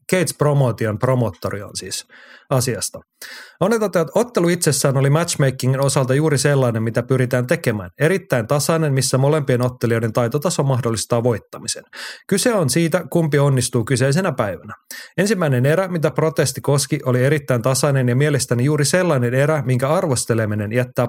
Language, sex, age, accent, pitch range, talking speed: Finnish, male, 30-49, native, 120-150 Hz, 135 wpm